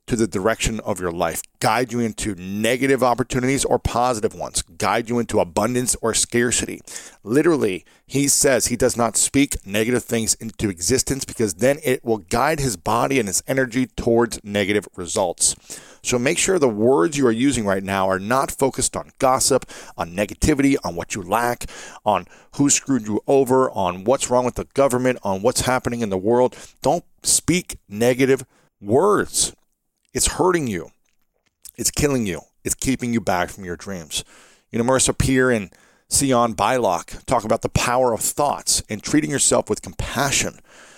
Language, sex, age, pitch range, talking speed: English, male, 40-59, 105-135 Hz, 170 wpm